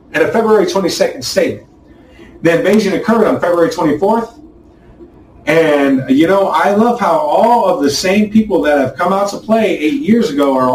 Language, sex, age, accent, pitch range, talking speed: English, male, 30-49, American, 160-225 Hz, 180 wpm